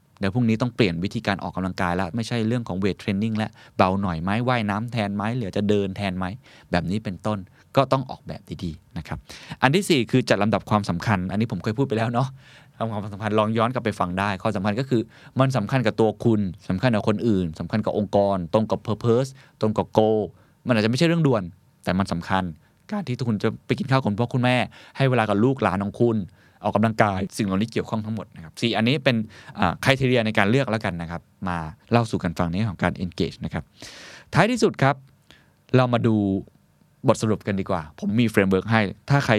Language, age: Thai, 20-39